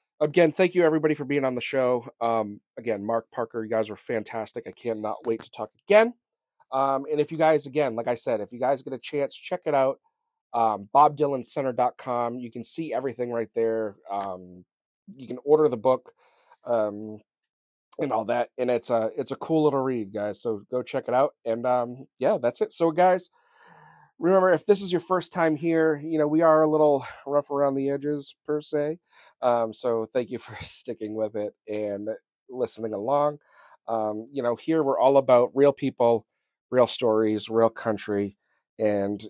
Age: 30-49